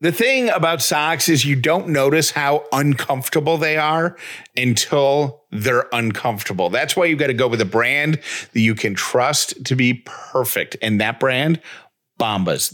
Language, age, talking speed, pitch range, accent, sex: English, 40-59, 165 wpm, 115-145 Hz, American, male